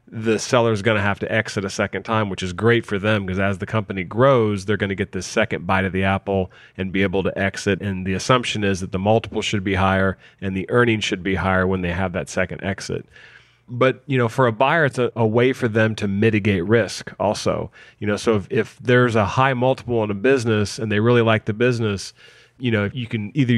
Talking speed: 250 wpm